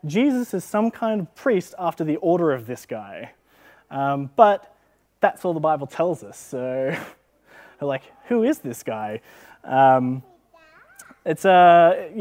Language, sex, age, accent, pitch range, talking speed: English, male, 20-39, Australian, 130-180 Hz, 145 wpm